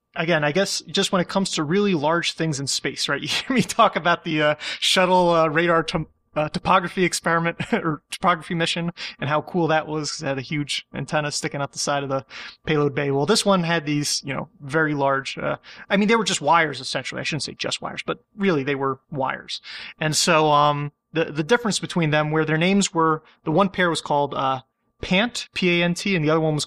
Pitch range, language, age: 140-180 Hz, English, 30-49